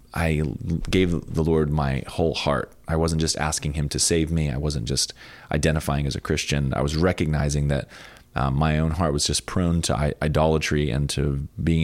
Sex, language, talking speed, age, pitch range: male, English, 195 wpm, 30-49, 70-80 Hz